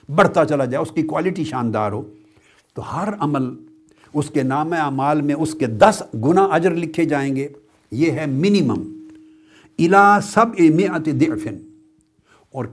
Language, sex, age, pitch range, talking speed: Urdu, male, 60-79, 135-200 Hz, 150 wpm